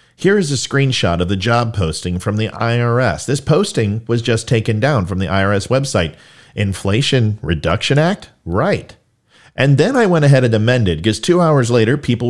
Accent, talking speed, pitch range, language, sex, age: American, 180 wpm, 100-135 Hz, English, male, 40-59